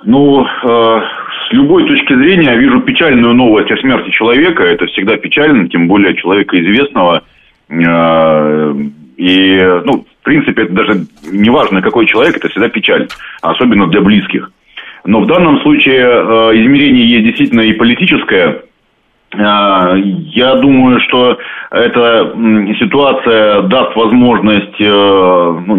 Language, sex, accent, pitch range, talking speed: Russian, male, native, 90-120 Hz, 115 wpm